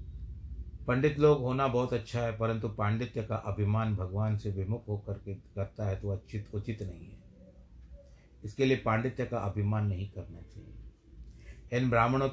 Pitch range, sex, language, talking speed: 95-120 Hz, male, Hindi, 155 wpm